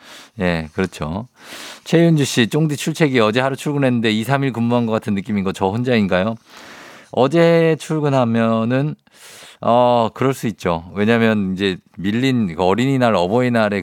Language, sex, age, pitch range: Korean, male, 50-69, 100-145 Hz